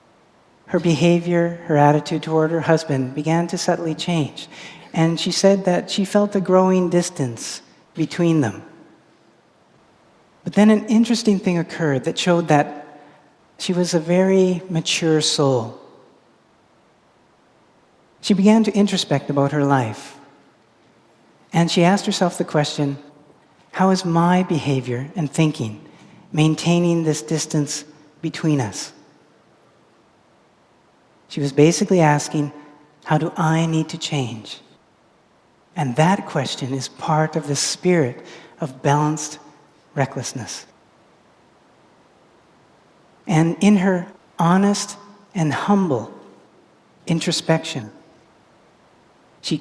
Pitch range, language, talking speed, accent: 145-180 Hz, English, 110 wpm, American